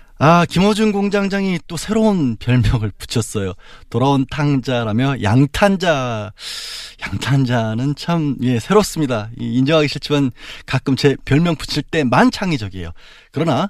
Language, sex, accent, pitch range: Korean, male, native, 105-150 Hz